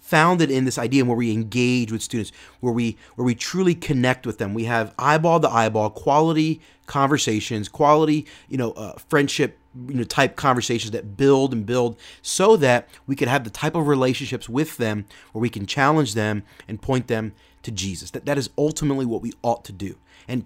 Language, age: English, 30-49